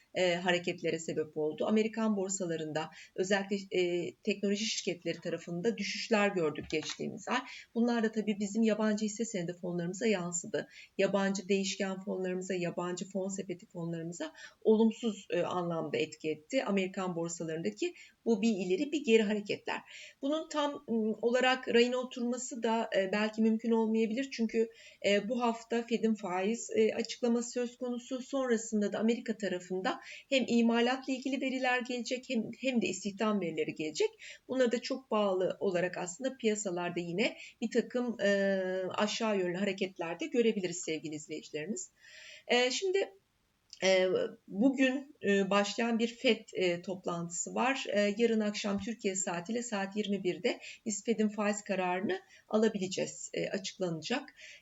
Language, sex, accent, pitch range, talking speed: Turkish, female, native, 185-235 Hz, 125 wpm